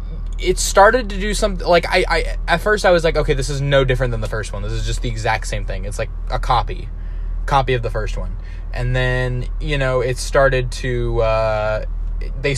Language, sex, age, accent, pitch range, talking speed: English, male, 10-29, American, 110-140 Hz, 225 wpm